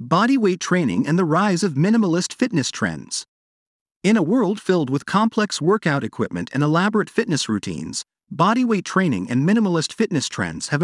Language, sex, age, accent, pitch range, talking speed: English, male, 40-59, American, 150-205 Hz, 155 wpm